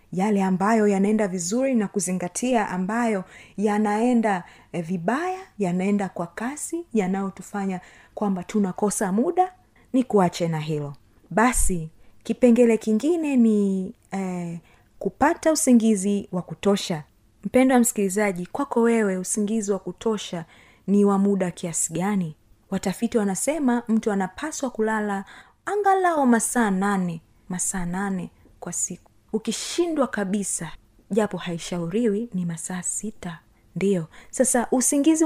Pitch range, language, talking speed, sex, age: 185-240 Hz, Swahili, 110 wpm, female, 30-49